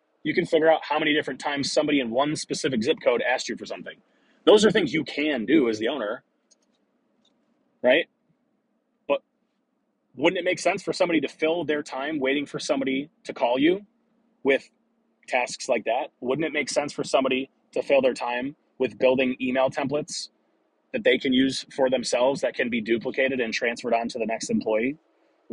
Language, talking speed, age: English, 190 wpm, 30-49